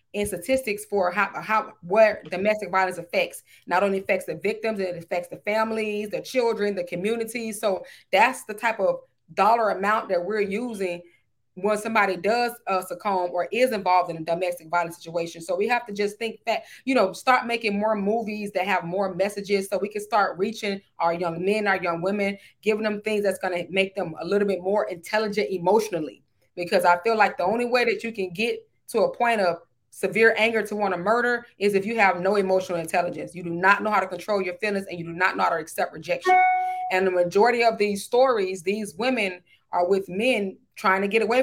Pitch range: 180-215 Hz